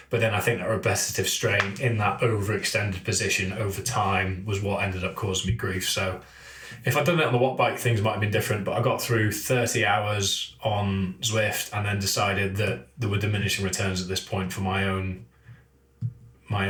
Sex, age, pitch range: male, 20-39, 95-115 Hz